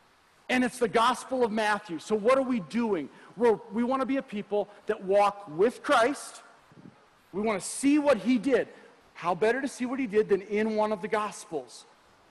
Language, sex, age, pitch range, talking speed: English, male, 40-59, 205-255 Hz, 205 wpm